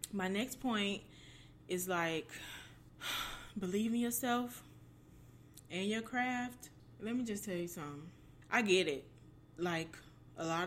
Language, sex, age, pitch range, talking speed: English, female, 20-39, 155-190 Hz, 130 wpm